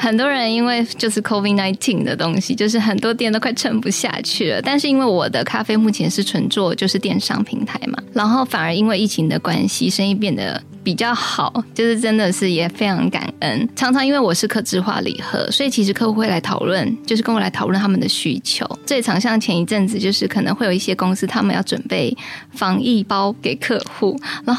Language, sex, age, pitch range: Chinese, female, 20-39, 195-240 Hz